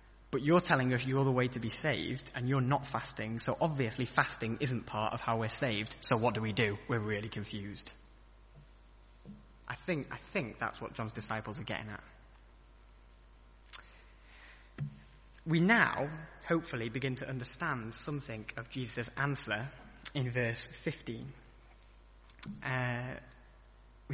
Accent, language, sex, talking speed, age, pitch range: British, English, male, 135 wpm, 20-39, 110-145 Hz